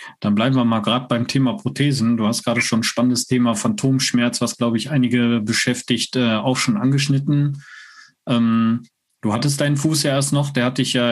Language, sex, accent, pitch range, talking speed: German, male, German, 120-145 Hz, 200 wpm